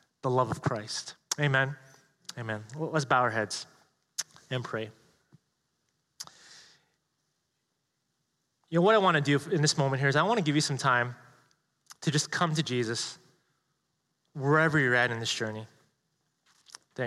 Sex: male